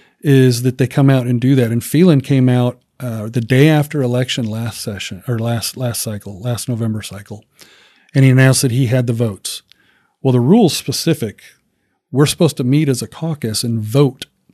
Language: English